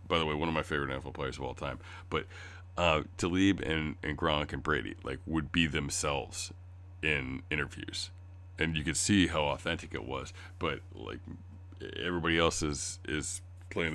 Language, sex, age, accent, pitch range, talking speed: English, male, 40-59, American, 80-90 Hz, 175 wpm